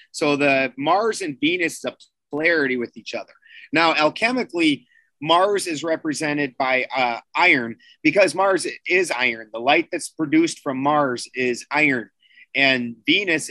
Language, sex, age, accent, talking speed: English, male, 30-49, American, 140 wpm